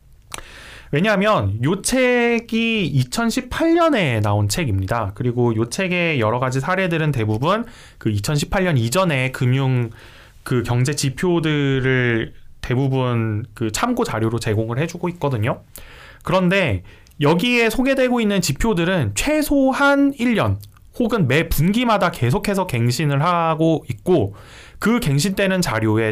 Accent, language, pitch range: native, Korean, 120-190 Hz